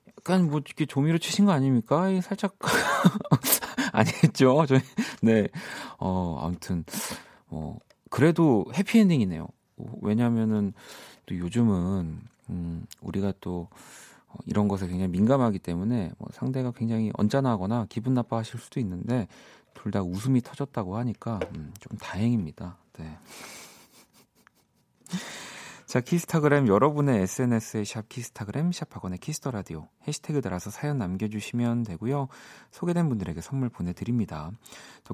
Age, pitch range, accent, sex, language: 40-59, 100-140 Hz, native, male, Korean